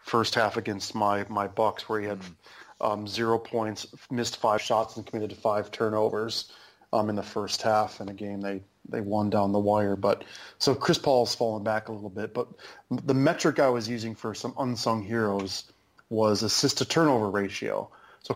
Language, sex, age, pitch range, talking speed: English, male, 30-49, 105-120 Hz, 190 wpm